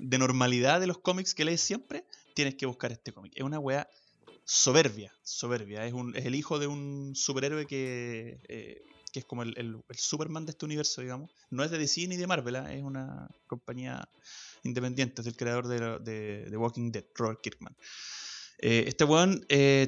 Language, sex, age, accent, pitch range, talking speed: Spanish, male, 20-39, Argentinian, 120-145 Hz, 200 wpm